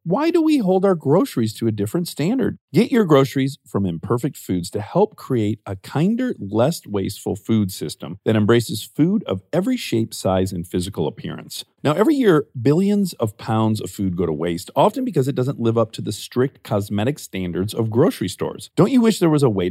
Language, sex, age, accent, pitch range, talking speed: English, male, 40-59, American, 105-165 Hz, 205 wpm